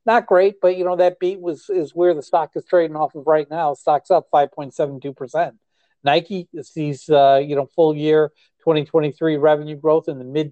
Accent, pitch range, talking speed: American, 135-155 Hz, 230 wpm